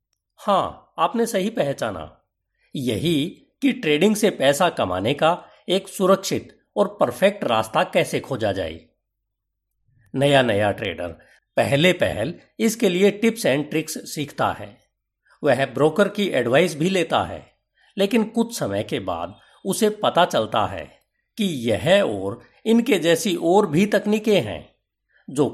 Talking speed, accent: 135 wpm, native